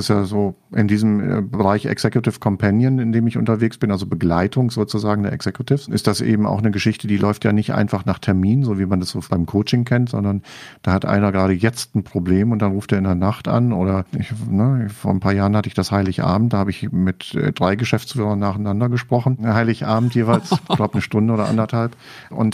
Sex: male